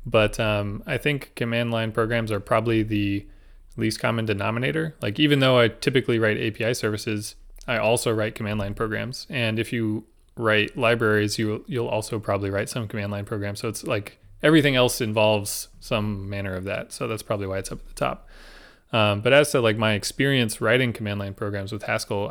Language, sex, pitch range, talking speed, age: English, male, 105-120 Hz, 195 wpm, 20-39